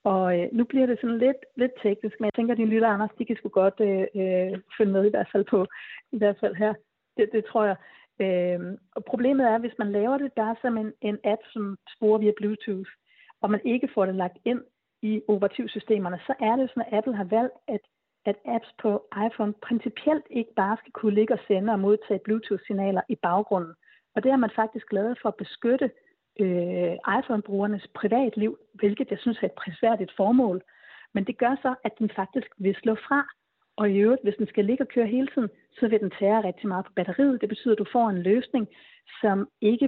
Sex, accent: female, native